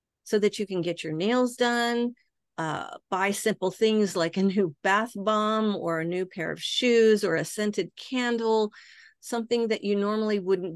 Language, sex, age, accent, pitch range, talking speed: English, female, 50-69, American, 170-225 Hz, 180 wpm